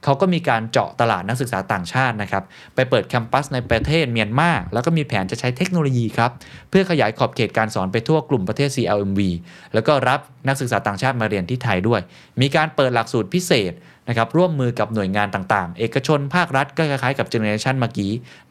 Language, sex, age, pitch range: Thai, male, 20-39, 105-140 Hz